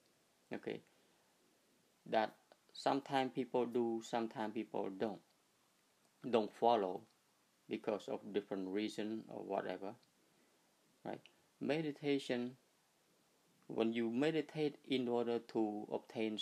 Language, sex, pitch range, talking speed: English, male, 110-135 Hz, 90 wpm